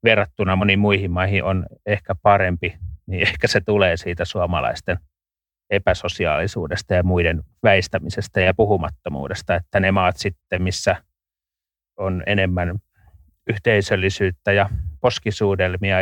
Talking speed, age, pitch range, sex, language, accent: 110 wpm, 30-49, 85-100 Hz, male, Finnish, native